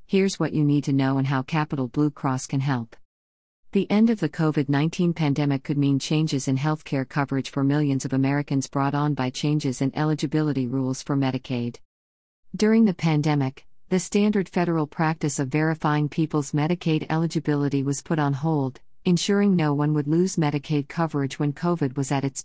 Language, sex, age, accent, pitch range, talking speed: English, female, 50-69, American, 135-160 Hz, 180 wpm